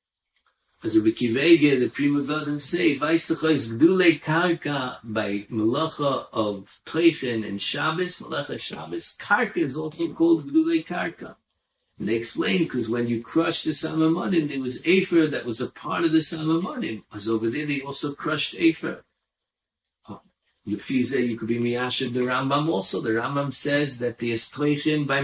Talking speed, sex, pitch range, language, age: 145 wpm, male, 115-160 Hz, English, 50-69